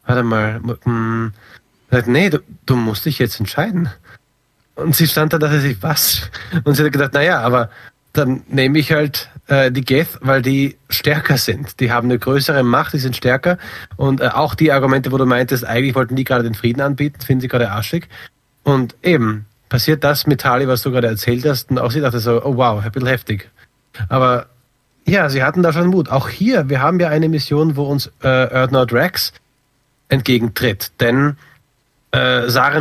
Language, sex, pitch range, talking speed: German, male, 120-145 Hz, 195 wpm